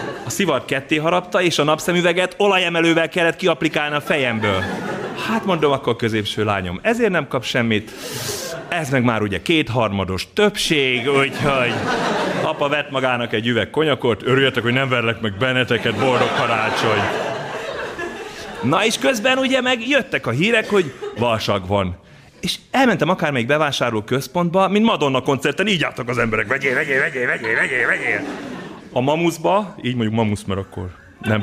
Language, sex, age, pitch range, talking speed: Hungarian, male, 30-49, 120-190 Hz, 150 wpm